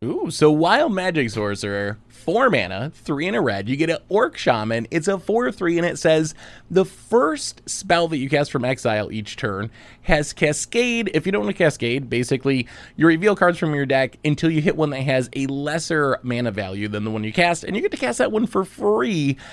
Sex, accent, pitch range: male, American, 120-170 Hz